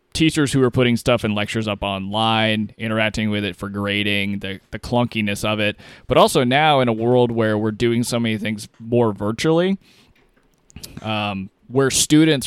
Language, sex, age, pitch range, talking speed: English, male, 20-39, 105-120 Hz, 175 wpm